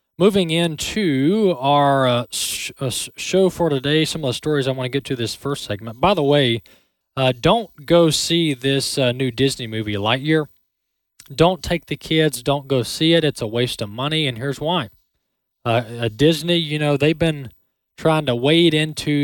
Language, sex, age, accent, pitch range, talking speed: English, male, 20-39, American, 120-150 Hz, 185 wpm